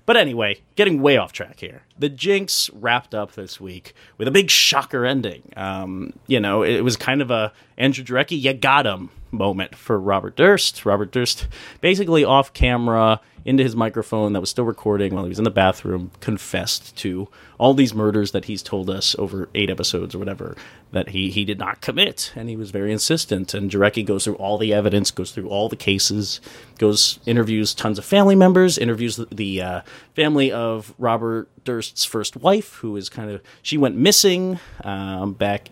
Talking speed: 190 wpm